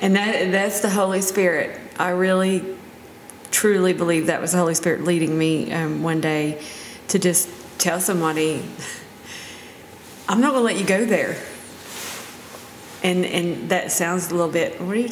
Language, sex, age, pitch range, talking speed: English, female, 40-59, 175-210 Hz, 165 wpm